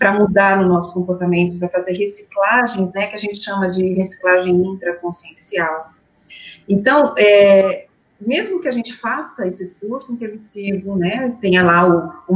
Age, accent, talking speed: 40-59, Brazilian, 150 wpm